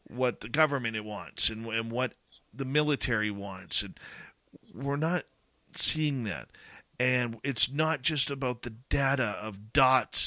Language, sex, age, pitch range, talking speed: English, male, 40-59, 115-140 Hz, 140 wpm